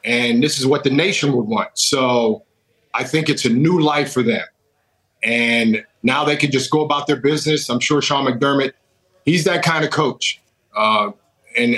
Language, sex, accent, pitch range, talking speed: English, male, American, 125-155 Hz, 190 wpm